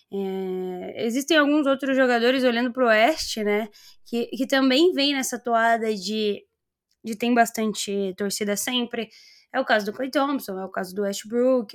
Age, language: 10-29, Portuguese